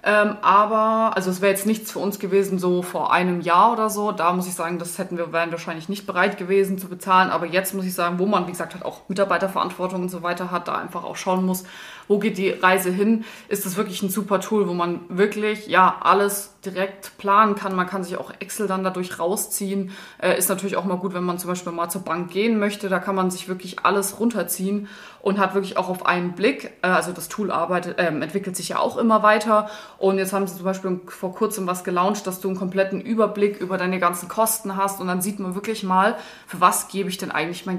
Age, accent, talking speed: 20-39, German, 235 wpm